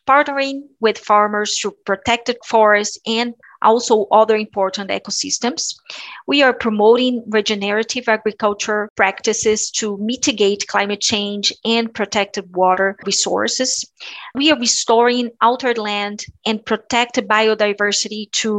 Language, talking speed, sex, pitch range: English, 110 wpm, female, 210-245 Hz